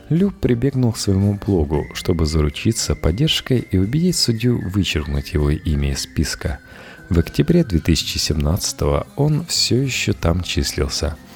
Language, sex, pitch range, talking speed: Russian, male, 75-115 Hz, 125 wpm